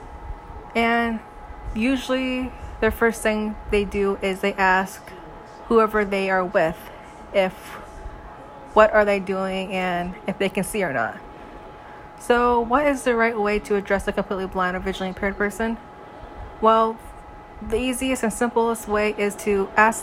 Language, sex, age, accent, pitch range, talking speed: English, female, 20-39, American, 190-225 Hz, 150 wpm